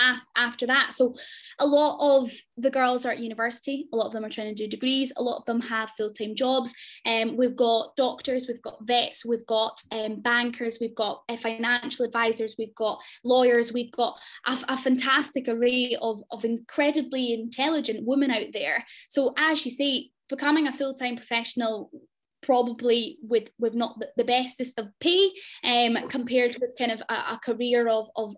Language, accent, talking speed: English, British, 180 wpm